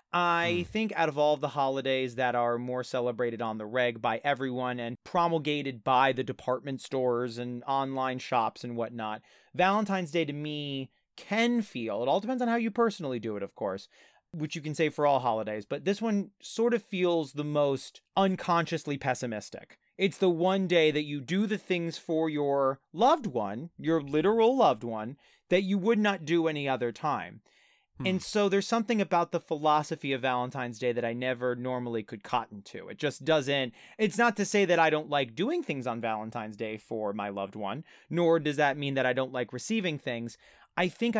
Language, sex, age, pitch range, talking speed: English, male, 30-49, 120-175 Hz, 195 wpm